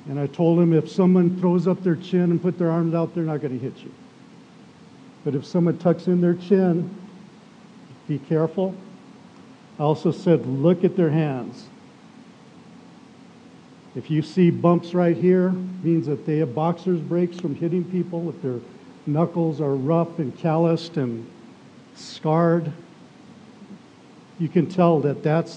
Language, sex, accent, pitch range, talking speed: English, male, American, 150-185 Hz, 155 wpm